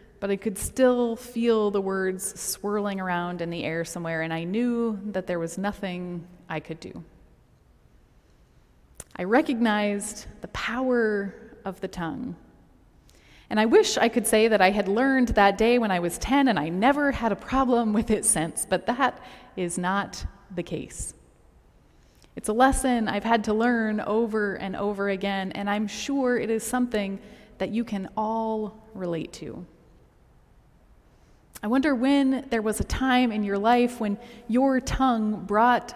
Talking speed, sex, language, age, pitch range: 165 wpm, female, English, 20-39, 195-240 Hz